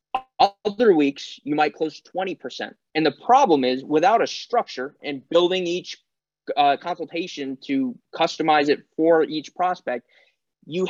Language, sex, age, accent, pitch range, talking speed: English, male, 20-39, American, 145-195 Hz, 140 wpm